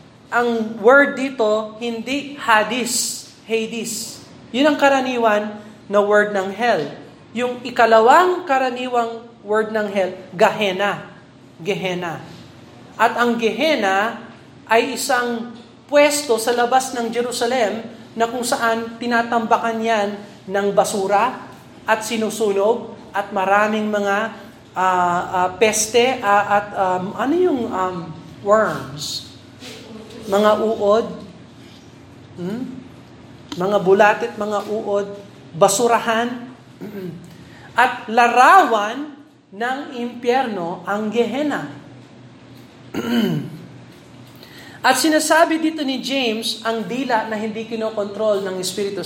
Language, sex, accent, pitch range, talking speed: Filipino, male, native, 190-235 Hz, 95 wpm